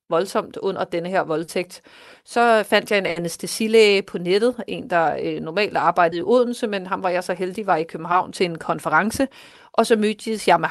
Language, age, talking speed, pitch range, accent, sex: Danish, 30-49, 195 wpm, 180-215 Hz, native, female